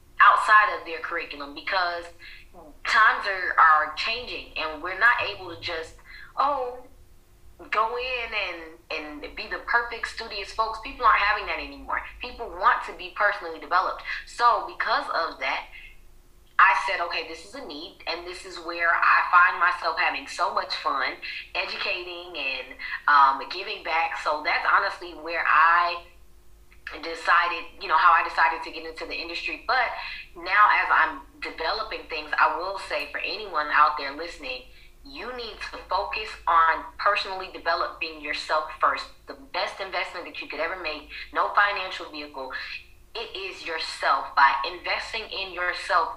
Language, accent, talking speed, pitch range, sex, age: English, American, 155 wpm, 160-205 Hz, female, 20-39